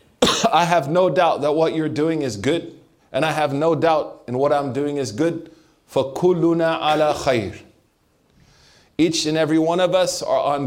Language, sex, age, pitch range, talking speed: English, male, 30-49, 125-165 Hz, 180 wpm